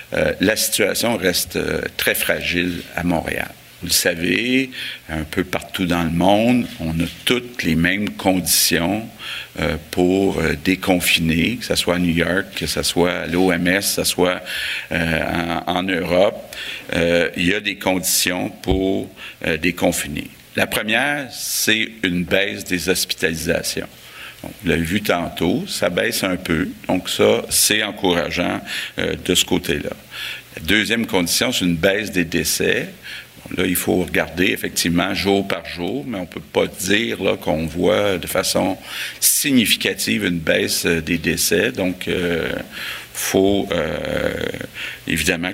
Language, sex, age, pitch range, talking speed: French, male, 50-69, 85-95 Hz, 155 wpm